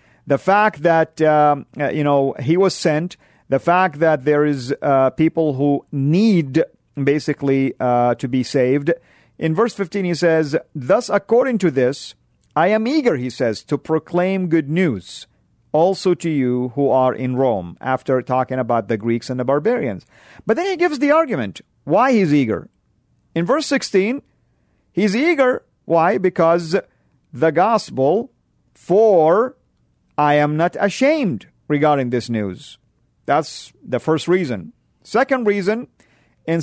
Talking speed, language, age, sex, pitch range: 145 wpm, English, 50-69, male, 130-190 Hz